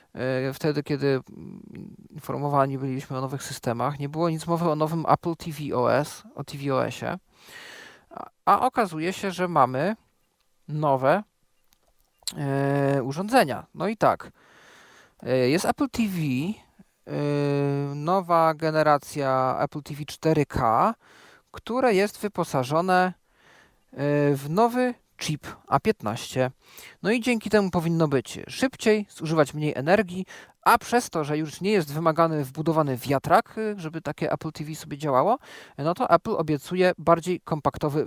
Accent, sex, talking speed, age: native, male, 120 wpm, 40-59